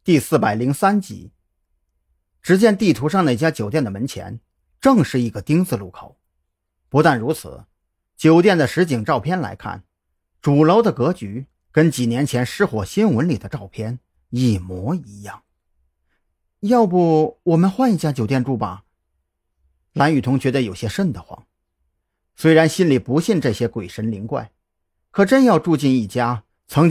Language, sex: Chinese, male